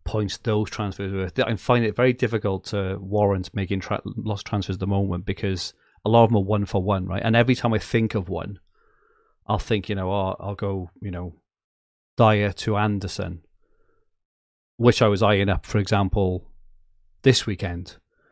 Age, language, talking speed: 30-49, English, 185 wpm